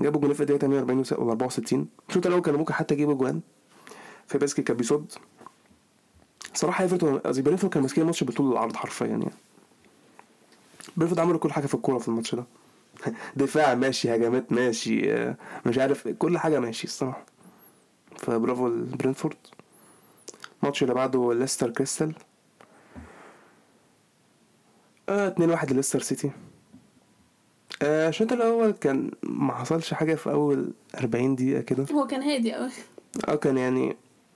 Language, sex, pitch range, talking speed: Arabic, male, 130-160 Hz, 110 wpm